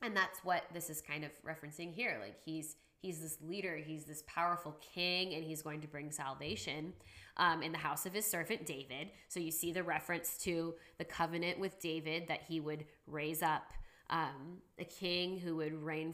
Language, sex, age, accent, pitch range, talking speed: English, female, 20-39, American, 155-190 Hz, 195 wpm